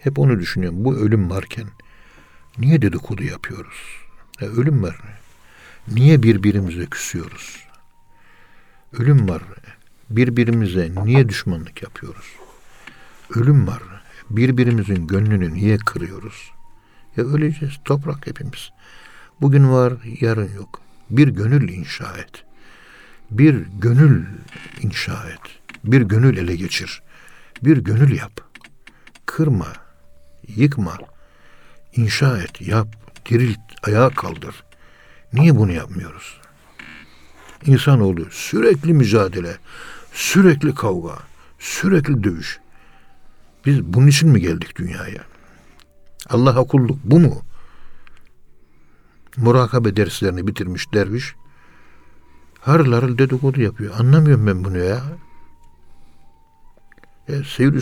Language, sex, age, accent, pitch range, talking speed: Turkish, male, 60-79, native, 90-135 Hz, 95 wpm